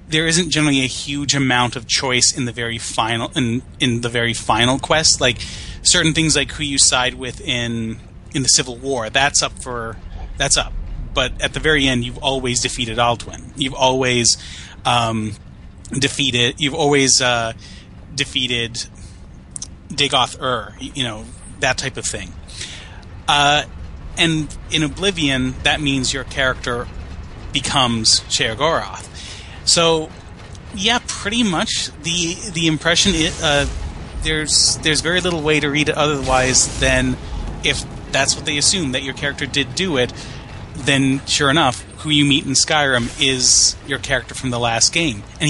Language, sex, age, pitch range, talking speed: English, male, 30-49, 115-145 Hz, 155 wpm